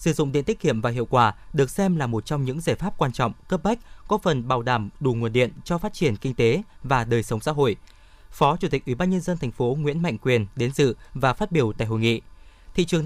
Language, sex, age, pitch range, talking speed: Vietnamese, male, 20-39, 125-175 Hz, 270 wpm